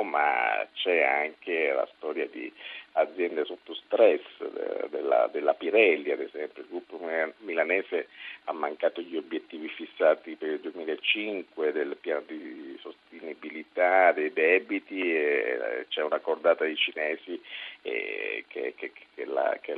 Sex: male